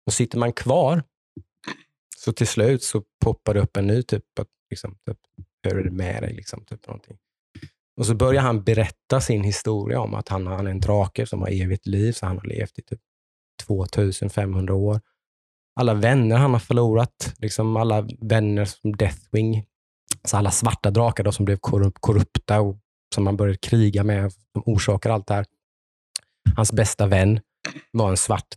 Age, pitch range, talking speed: 20-39, 100-115 Hz, 175 wpm